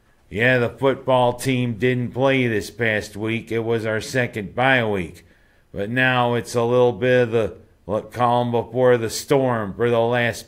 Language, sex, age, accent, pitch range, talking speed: English, male, 50-69, American, 110-125 Hz, 170 wpm